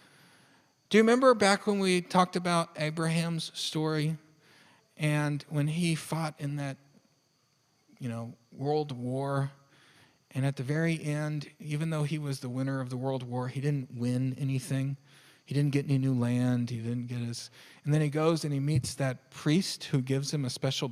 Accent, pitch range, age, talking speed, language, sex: American, 135-175 Hz, 40-59, 180 wpm, English, male